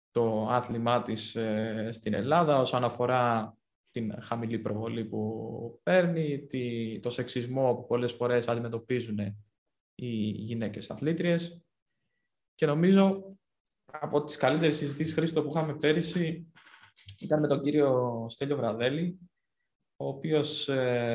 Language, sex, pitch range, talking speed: Greek, male, 115-145 Hz, 110 wpm